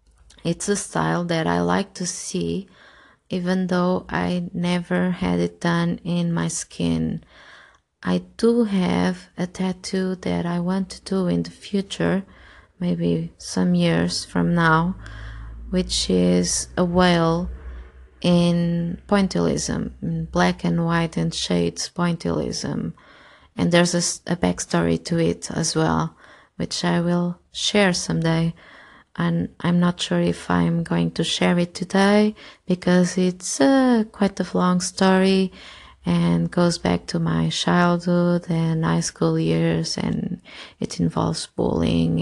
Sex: female